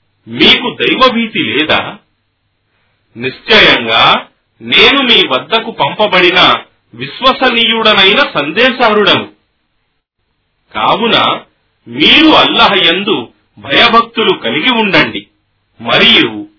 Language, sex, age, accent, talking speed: Telugu, male, 40-59, native, 60 wpm